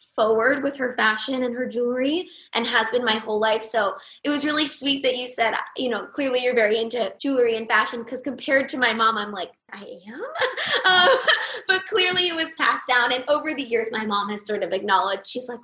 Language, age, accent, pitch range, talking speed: English, 20-39, American, 210-275 Hz, 225 wpm